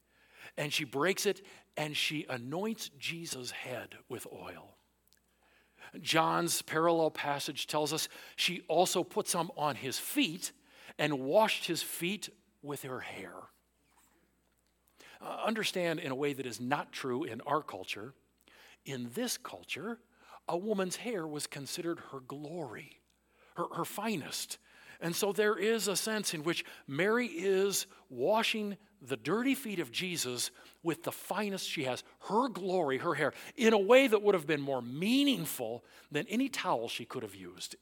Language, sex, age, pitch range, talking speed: English, male, 50-69, 125-195 Hz, 150 wpm